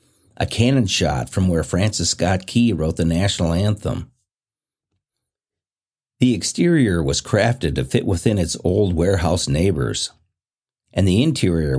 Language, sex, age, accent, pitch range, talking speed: English, male, 50-69, American, 85-115 Hz, 130 wpm